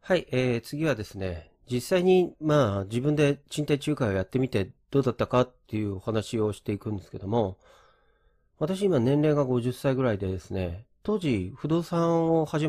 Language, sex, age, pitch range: Japanese, male, 40-59, 100-150 Hz